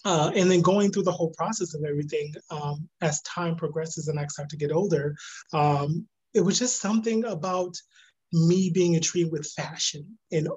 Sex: male